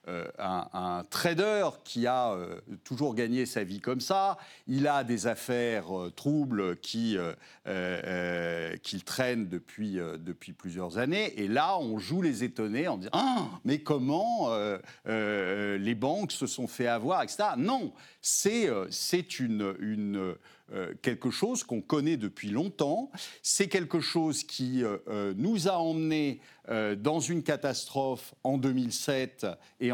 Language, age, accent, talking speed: French, 50-69, French, 150 wpm